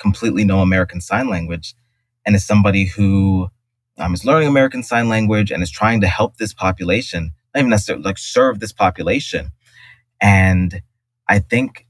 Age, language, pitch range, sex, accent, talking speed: 20-39, English, 100-120 Hz, male, American, 160 wpm